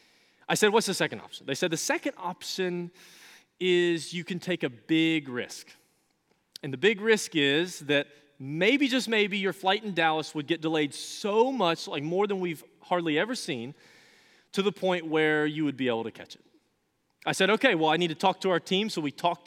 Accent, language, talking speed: American, English, 210 wpm